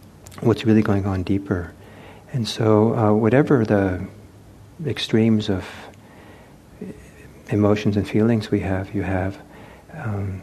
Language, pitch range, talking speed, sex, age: English, 95-110 Hz, 115 wpm, male, 50-69